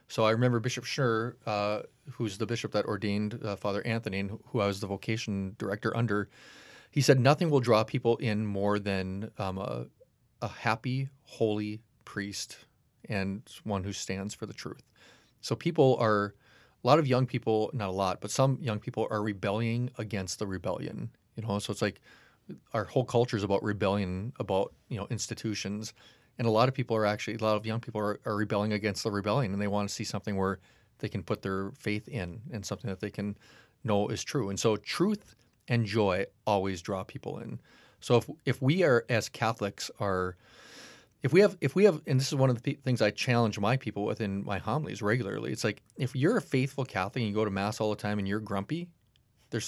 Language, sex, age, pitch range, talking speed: English, male, 30-49, 100-125 Hz, 210 wpm